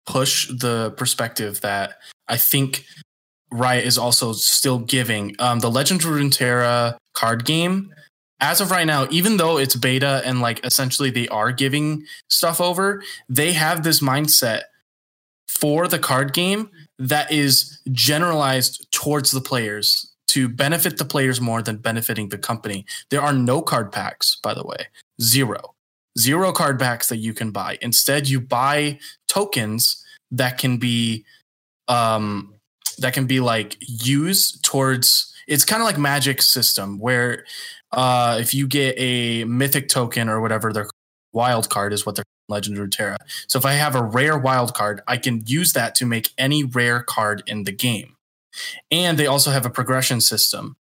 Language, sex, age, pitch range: English, male, 20-39, 115-145 Hz